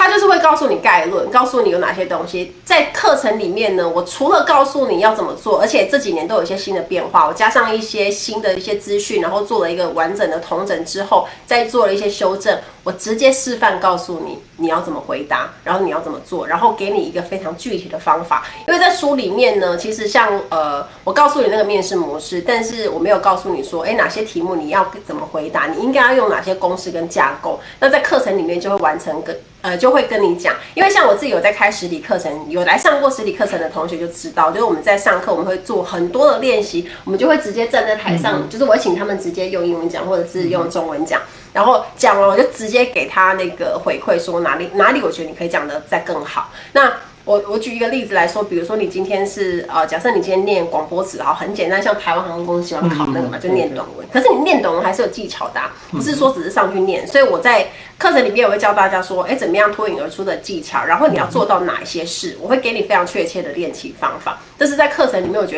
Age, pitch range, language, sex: 30-49, 180-260 Hz, Chinese, female